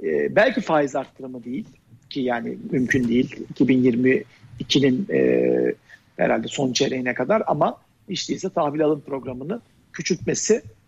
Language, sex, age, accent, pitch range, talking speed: Turkish, male, 50-69, native, 135-200 Hz, 120 wpm